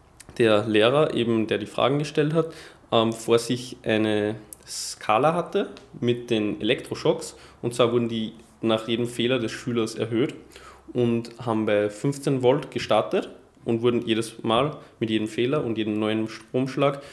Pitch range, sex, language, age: 110-125 Hz, male, German, 10-29